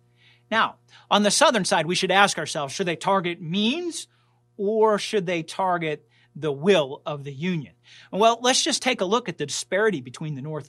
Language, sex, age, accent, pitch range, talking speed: English, male, 40-59, American, 150-195 Hz, 190 wpm